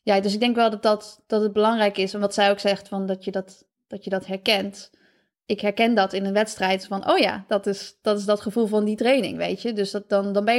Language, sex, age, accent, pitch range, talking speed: Dutch, female, 20-39, Dutch, 200-225 Hz, 280 wpm